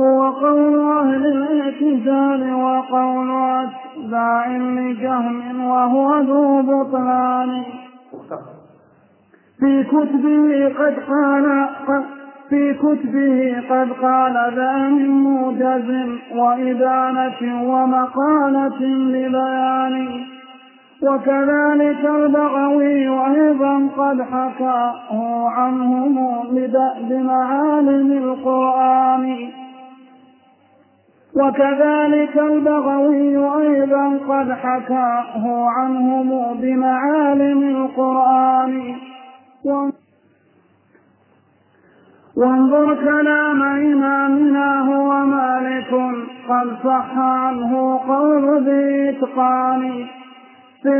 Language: Arabic